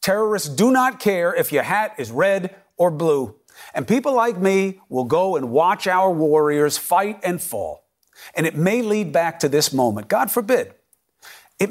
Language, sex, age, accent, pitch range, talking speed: English, male, 40-59, American, 165-230 Hz, 180 wpm